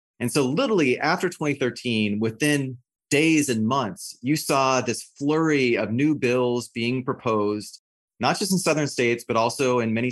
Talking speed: 160 wpm